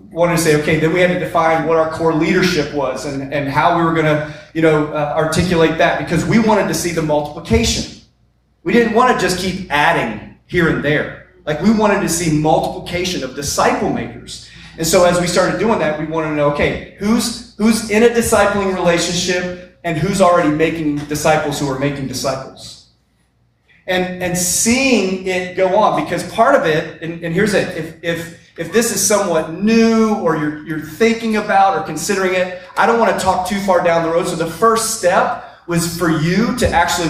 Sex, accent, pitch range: male, American, 155-195 Hz